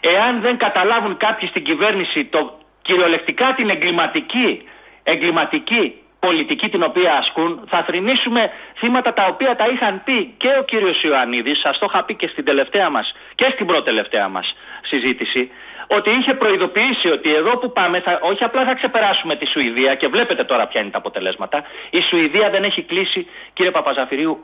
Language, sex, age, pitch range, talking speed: Greek, male, 40-59, 180-265 Hz, 165 wpm